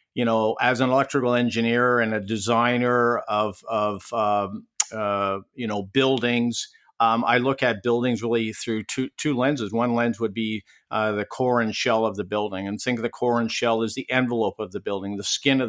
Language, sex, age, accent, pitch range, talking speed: English, male, 50-69, American, 115-135 Hz, 205 wpm